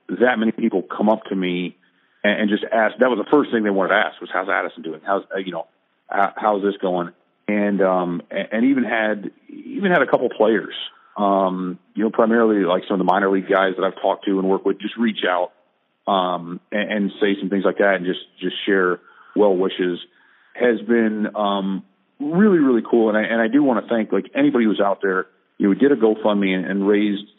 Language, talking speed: English, 225 wpm